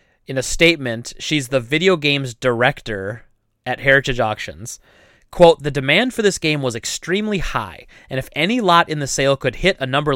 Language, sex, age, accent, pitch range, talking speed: English, male, 30-49, American, 125-160 Hz, 185 wpm